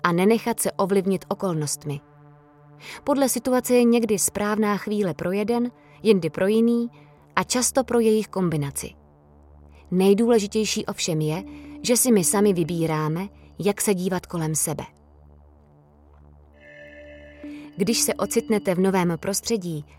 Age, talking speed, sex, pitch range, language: 20-39, 120 wpm, female, 155-215 Hz, Czech